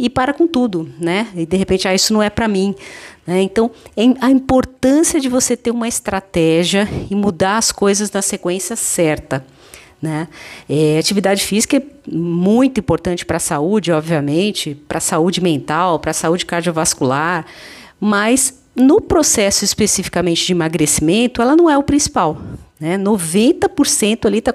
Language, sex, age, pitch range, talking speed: Portuguese, female, 50-69, 170-235 Hz, 150 wpm